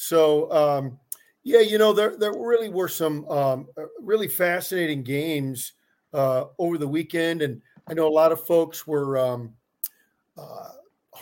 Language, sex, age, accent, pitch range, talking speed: English, male, 50-69, American, 140-165 Hz, 150 wpm